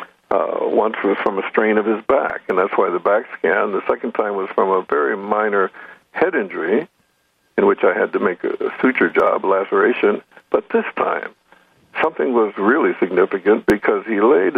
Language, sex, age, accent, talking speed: English, male, 60-79, American, 195 wpm